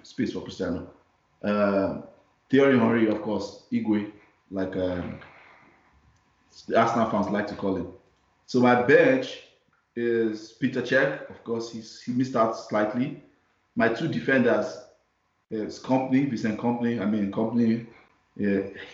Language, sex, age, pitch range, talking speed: English, male, 20-39, 100-120 Hz, 135 wpm